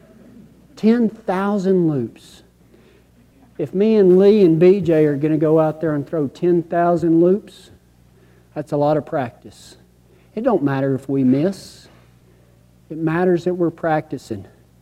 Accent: American